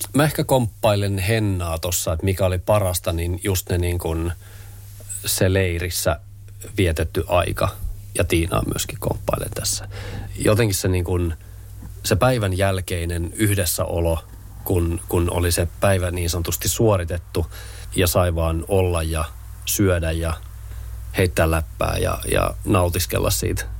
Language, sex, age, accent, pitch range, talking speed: Finnish, male, 30-49, native, 90-100 Hz, 135 wpm